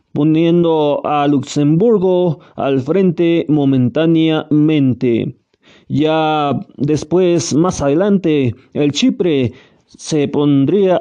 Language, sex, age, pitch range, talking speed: Spanish, male, 30-49, 140-180 Hz, 75 wpm